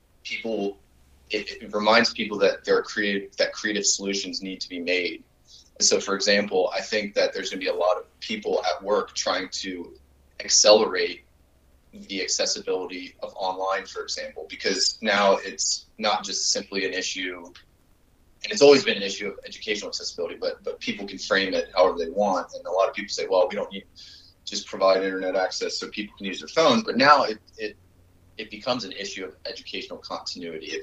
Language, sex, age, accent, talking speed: English, male, 30-49, American, 195 wpm